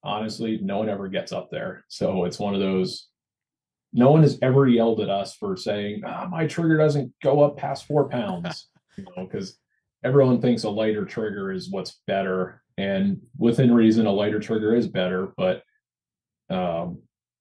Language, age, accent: English, 30-49, American